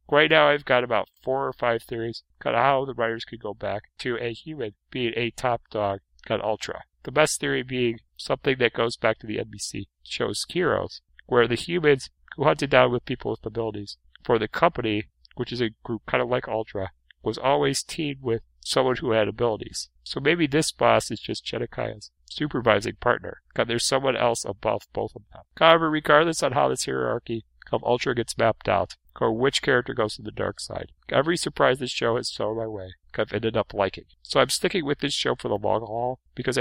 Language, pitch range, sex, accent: English, 110-140 Hz, male, American